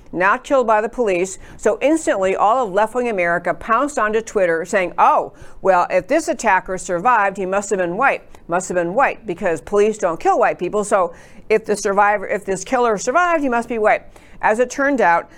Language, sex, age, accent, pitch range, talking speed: English, female, 50-69, American, 185-245 Hz, 205 wpm